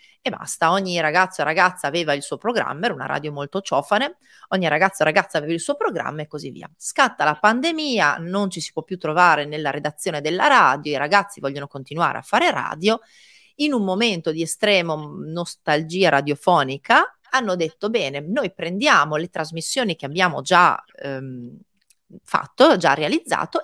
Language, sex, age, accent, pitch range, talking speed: Italian, female, 30-49, native, 150-210 Hz, 170 wpm